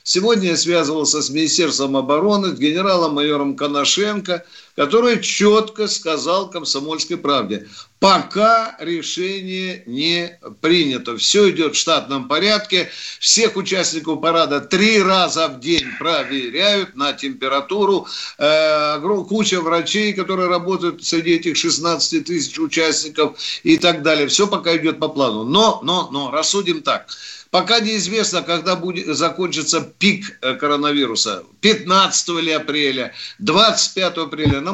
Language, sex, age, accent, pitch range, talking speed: Russian, male, 50-69, native, 150-200 Hz, 115 wpm